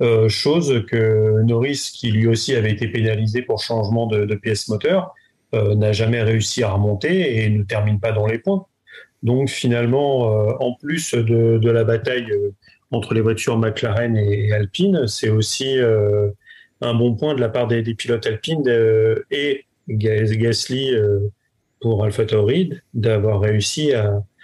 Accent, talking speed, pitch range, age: French, 165 wpm, 110-130 Hz, 30-49